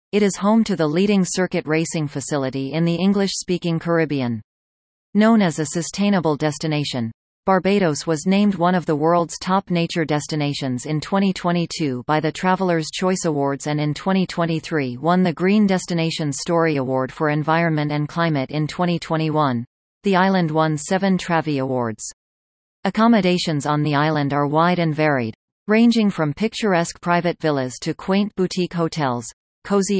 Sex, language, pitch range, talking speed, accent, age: female, English, 145-180 Hz, 150 wpm, American, 40-59